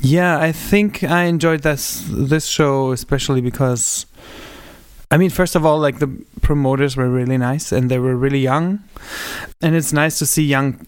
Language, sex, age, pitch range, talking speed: English, male, 20-39, 125-150 Hz, 175 wpm